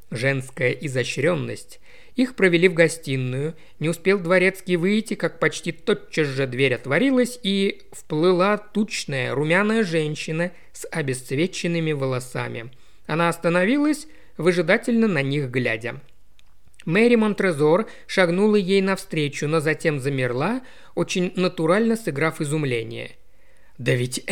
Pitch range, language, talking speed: 135-195 Hz, Russian, 110 wpm